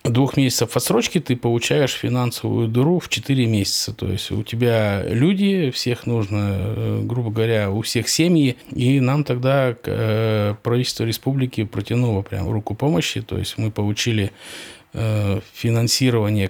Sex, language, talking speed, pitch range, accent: male, Russian, 130 wpm, 100-125 Hz, native